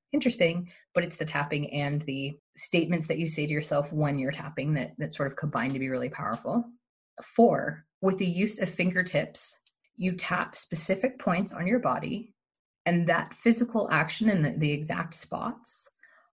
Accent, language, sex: American, English, female